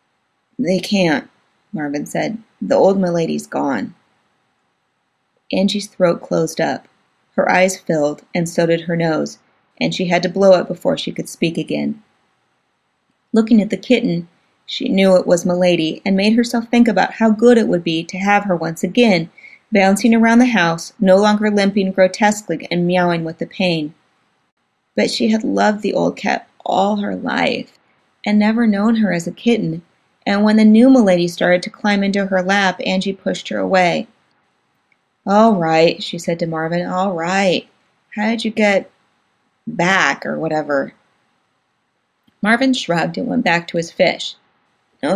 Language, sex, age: English, female, 30-49